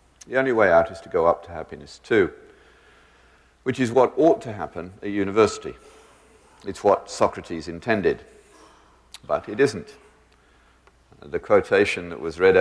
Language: English